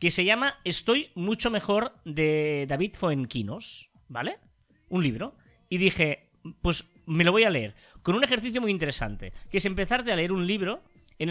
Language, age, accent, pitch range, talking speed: Spanish, 20-39, Spanish, 140-205 Hz, 175 wpm